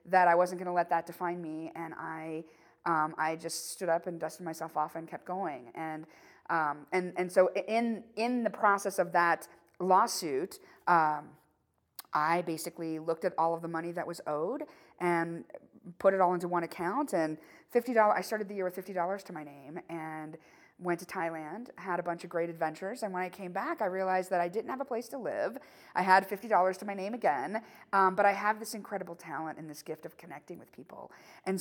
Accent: American